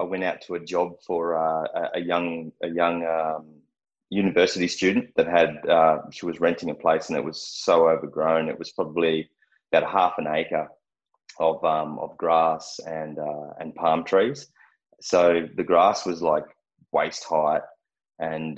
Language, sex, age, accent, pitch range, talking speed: English, male, 20-39, Australian, 80-100 Hz, 170 wpm